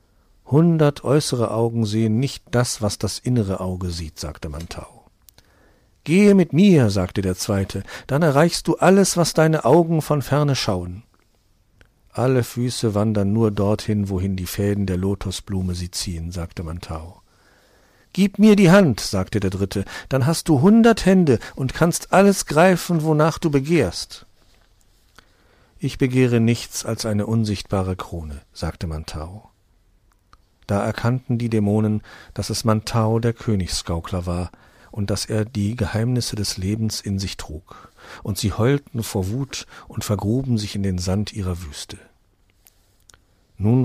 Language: German